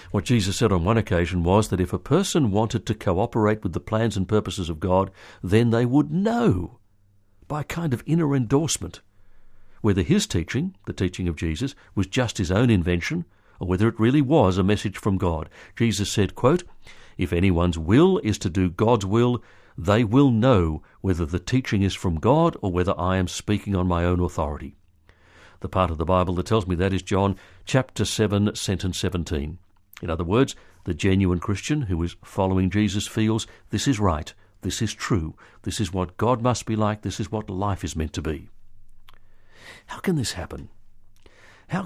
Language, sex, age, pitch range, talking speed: English, male, 60-79, 90-115 Hz, 190 wpm